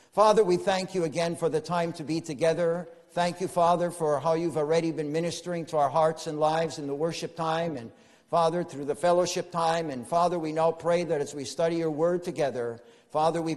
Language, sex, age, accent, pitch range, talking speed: English, male, 50-69, American, 155-185 Hz, 215 wpm